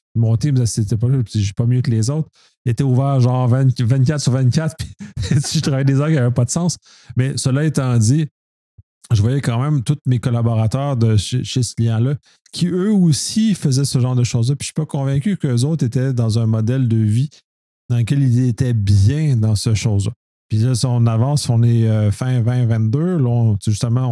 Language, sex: French, male